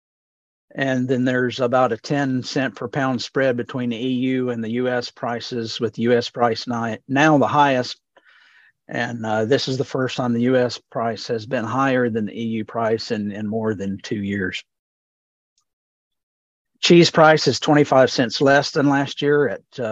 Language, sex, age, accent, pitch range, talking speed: English, male, 50-69, American, 115-140 Hz, 170 wpm